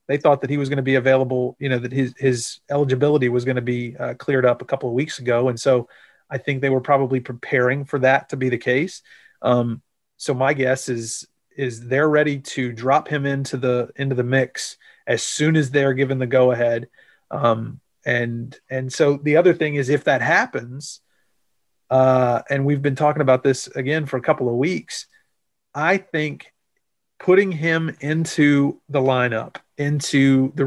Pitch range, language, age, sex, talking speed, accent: 130-150 Hz, English, 40-59, male, 190 wpm, American